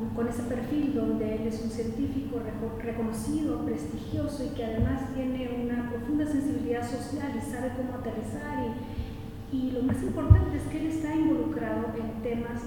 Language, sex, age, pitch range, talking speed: Spanish, female, 40-59, 230-275 Hz, 160 wpm